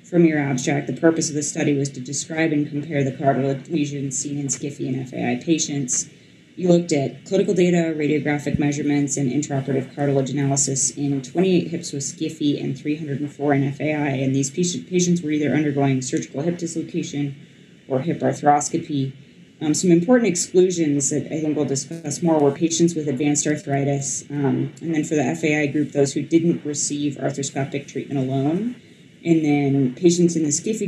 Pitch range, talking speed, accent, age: 140-165 Hz, 175 wpm, American, 20-39